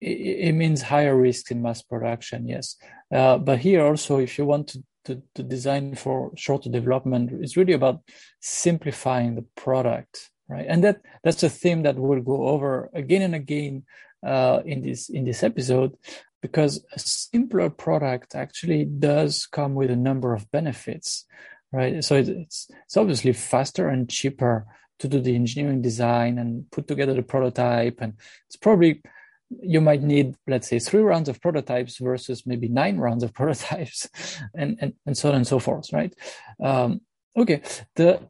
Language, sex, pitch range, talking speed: English, male, 130-160 Hz, 170 wpm